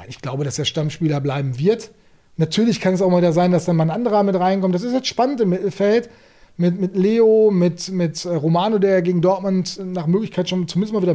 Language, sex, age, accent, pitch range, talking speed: German, male, 30-49, German, 170-220 Hz, 220 wpm